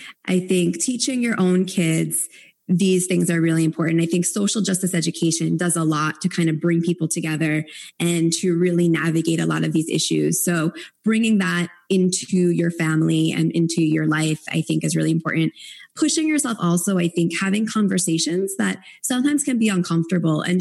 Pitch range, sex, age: 170-215 Hz, female, 20-39